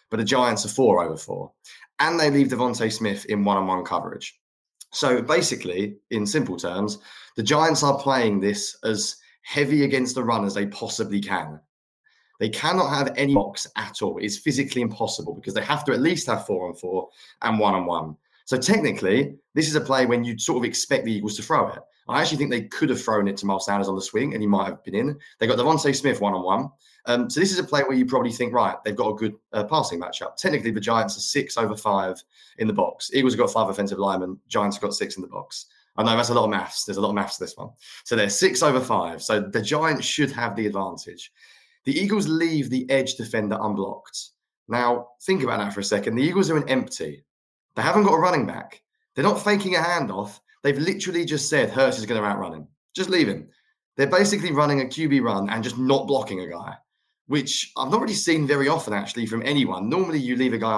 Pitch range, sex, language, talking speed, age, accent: 105-145 Hz, male, English, 235 wpm, 20-39, British